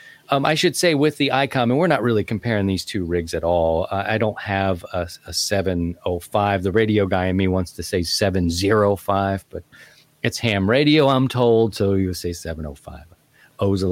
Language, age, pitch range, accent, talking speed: English, 40-59, 95-135 Hz, American, 200 wpm